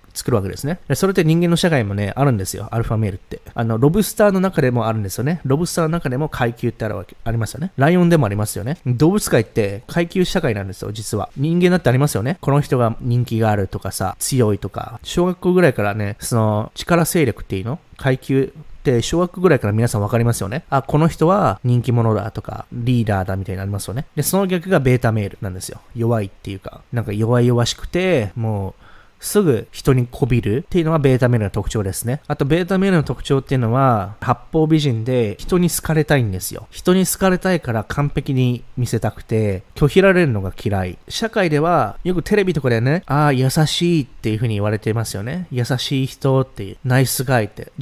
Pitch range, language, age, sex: 110-160 Hz, Japanese, 20-39, male